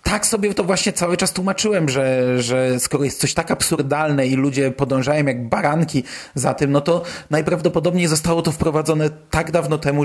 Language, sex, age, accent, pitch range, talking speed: Polish, male, 30-49, native, 140-165 Hz, 180 wpm